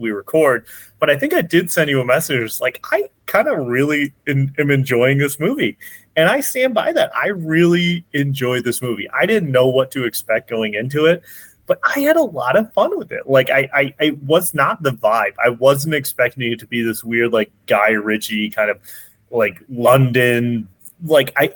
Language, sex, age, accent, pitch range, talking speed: English, male, 30-49, American, 115-160 Hz, 205 wpm